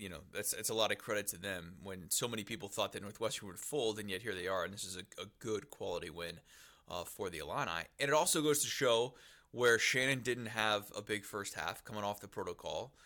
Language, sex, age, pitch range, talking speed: English, male, 20-39, 100-125 Hz, 250 wpm